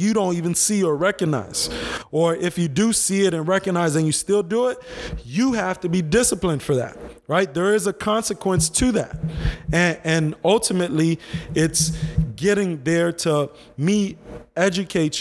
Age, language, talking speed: 20-39, English, 165 wpm